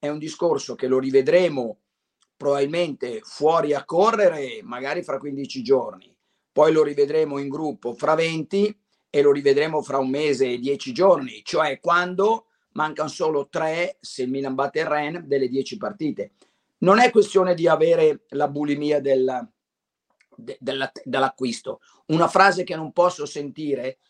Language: Italian